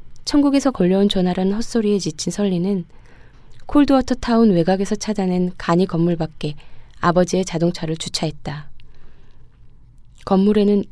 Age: 20-39